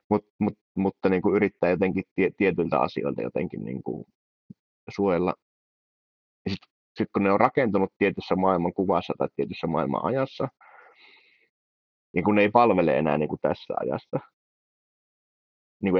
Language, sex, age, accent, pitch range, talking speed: Finnish, male, 30-49, native, 85-120 Hz, 120 wpm